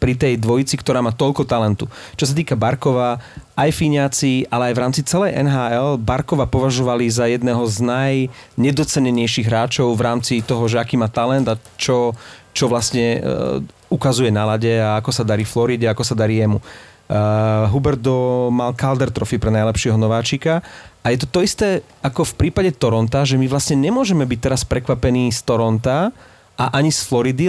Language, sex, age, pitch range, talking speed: Slovak, male, 30-49, 120-150 Hz, 170 wpm